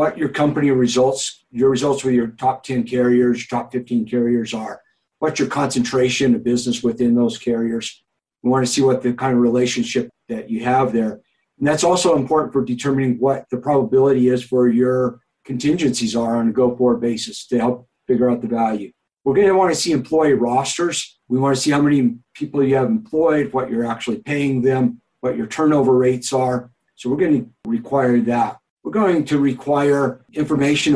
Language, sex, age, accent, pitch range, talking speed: English, male, 50-69, American, 120-145 Hz, 190 wpm